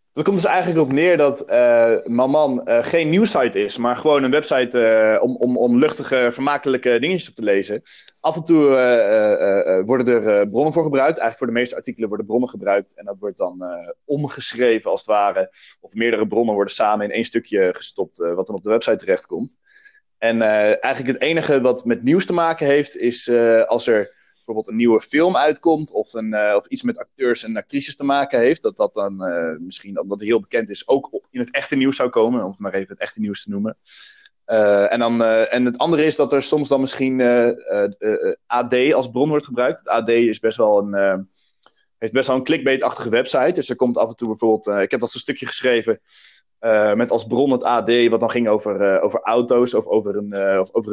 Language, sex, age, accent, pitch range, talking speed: Dutch, male, 20-39, Dutch, 110-150 Hz, 230 wpm